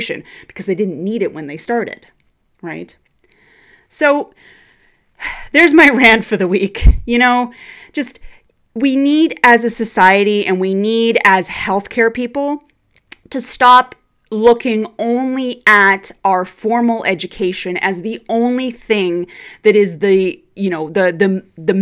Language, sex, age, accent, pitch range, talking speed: English, female, 30-49, American, 185-240 Hz, 140 wpm